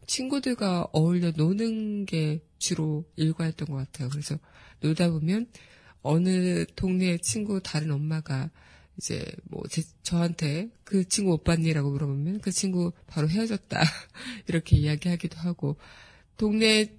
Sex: female